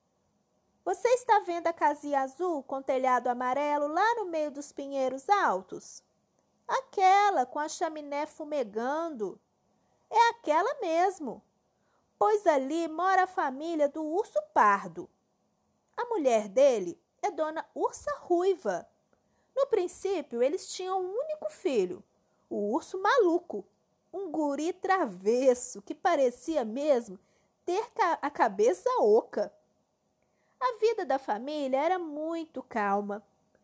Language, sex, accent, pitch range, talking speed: Portuguese, female, Brazilian, 270-375 Hz, 115 wpm